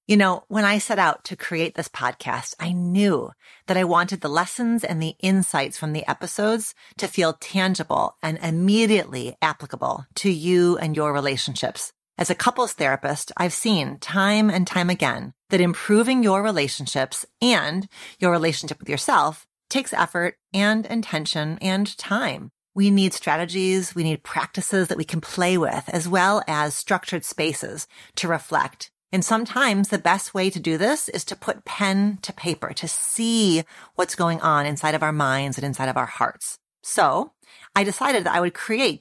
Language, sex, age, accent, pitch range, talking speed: English, female, 30-49, American, 160-200 Hz, 170 wpm